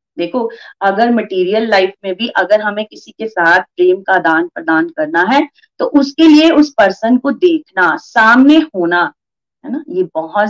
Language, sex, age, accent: Hindi, female, 30-49, native